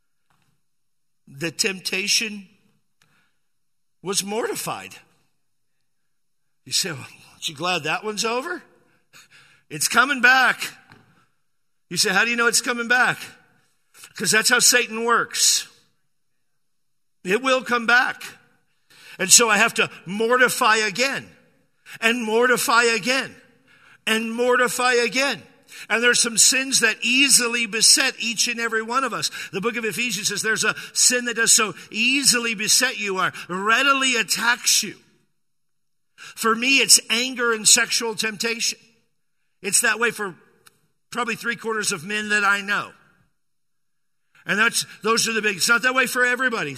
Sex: male